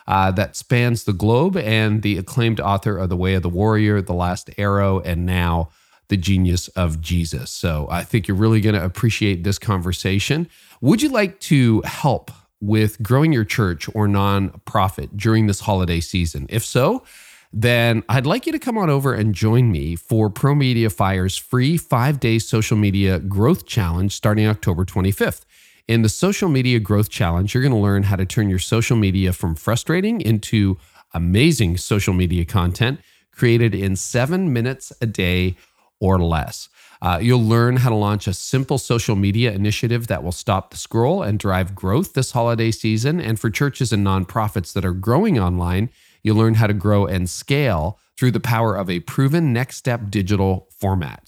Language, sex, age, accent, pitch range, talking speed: English, male, 40-59, American, 95-125 Hz, 180 wpm